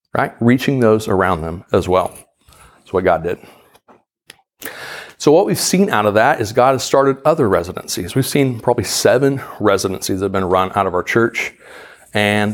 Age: 40-59